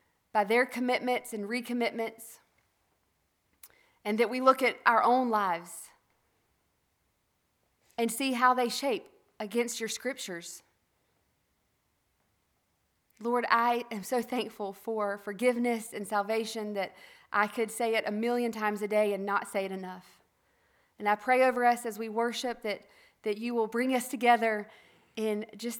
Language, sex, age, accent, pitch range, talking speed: English, female, 40-59, American, 210-240 Hz, 145 wpm